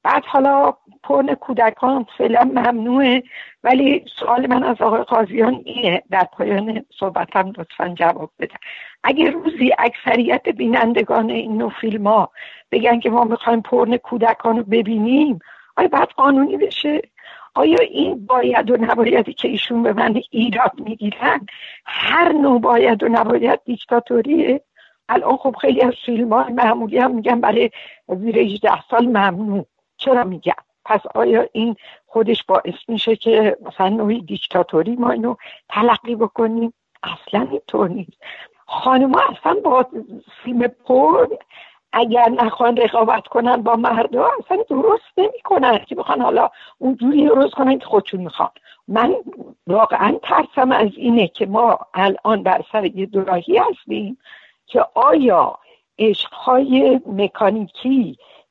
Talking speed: 125 wpm